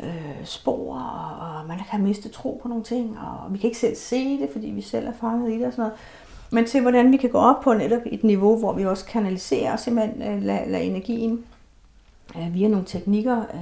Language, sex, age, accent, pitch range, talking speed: Danish, female, 60-79, native, 195-235 Hz, 205 wpm